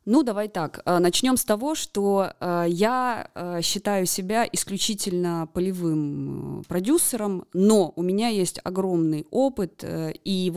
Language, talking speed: Russian, 120 wpm